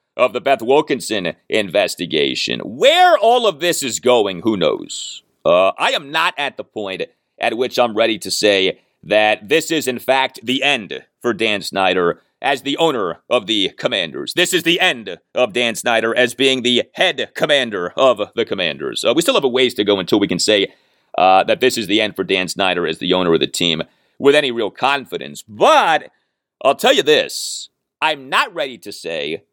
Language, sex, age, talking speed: English, male, 40-59, 200 wpm